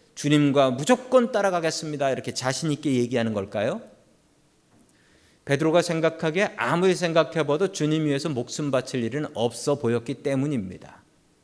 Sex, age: male, 40-59